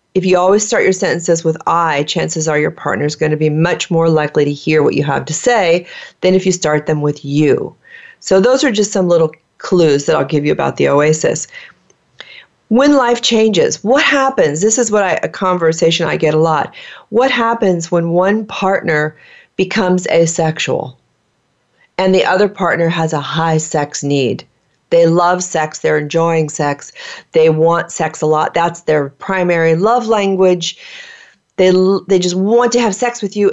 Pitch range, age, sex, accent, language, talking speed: 160-200 Hz, 40-59, female, American, English, 185 wpm